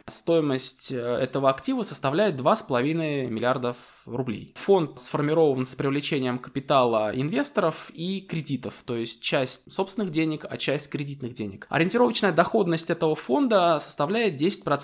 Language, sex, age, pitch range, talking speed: Russian, male, 20-39, 125-165 Hz, 115 wpm